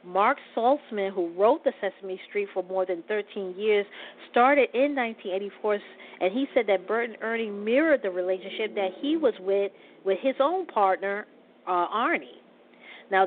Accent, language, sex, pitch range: American, English, female, 190-245 Hz